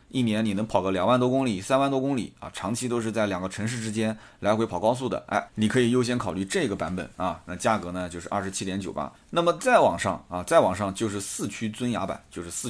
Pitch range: 95-125 Hz